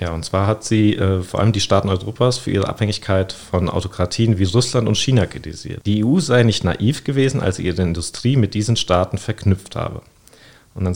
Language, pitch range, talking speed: German, 95-120 Hz, 210 wpm